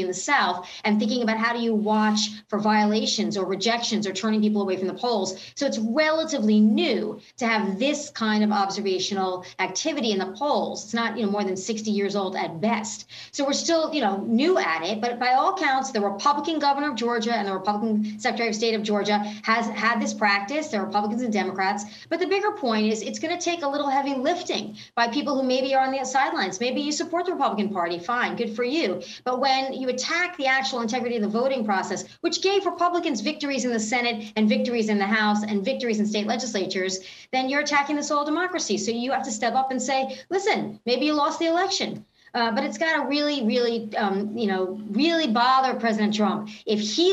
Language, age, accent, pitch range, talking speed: English, 40-59, American, 210-275 Hz, 220 wpm